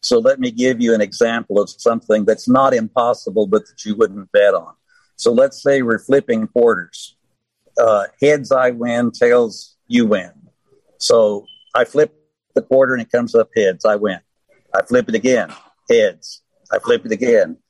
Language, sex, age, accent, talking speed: English, male, 60-79, American, 175 wpm